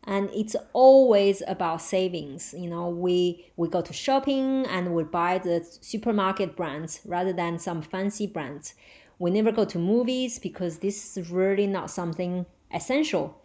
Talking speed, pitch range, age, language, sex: 155 wpm, 180-220 Hz, 30-49, English, female